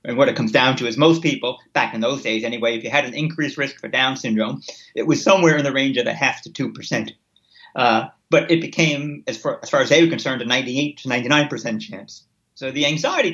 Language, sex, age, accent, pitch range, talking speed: English, male, 40-59, American, 115-155 Hz, 250 wpm